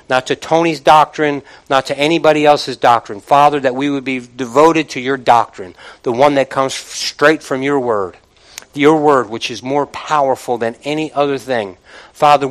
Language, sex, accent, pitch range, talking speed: English, male, American, 120-145 Hz, 175 wpm